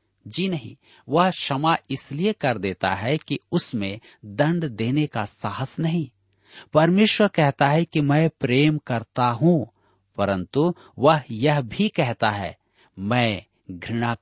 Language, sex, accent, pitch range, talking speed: Hindi, male, native, 105-150 Hz, 130 wpm